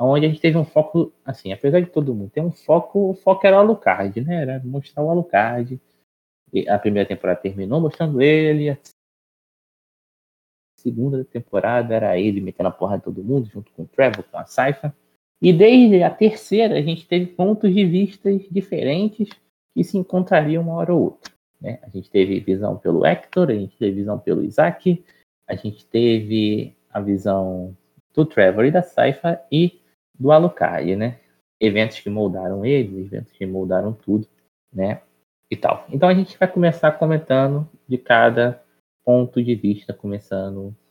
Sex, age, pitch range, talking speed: male, 20-39, 100-165 Hz, 170 wpm